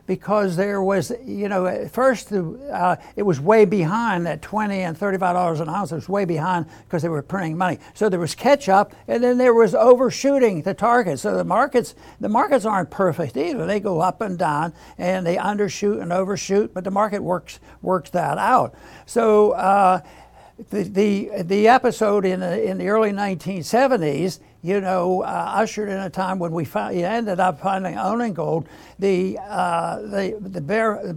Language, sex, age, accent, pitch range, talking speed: English, male, 60-79, American, 185-225 Hz, 185 wpm